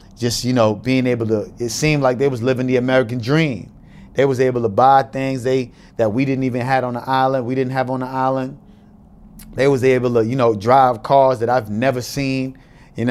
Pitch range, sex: 115-135 Hz, male